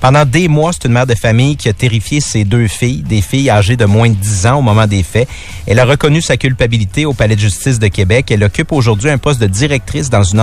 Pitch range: 105-140 Hz